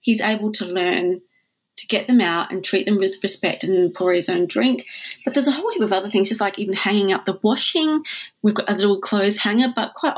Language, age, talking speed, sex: English, 30-49, 240 wpm, female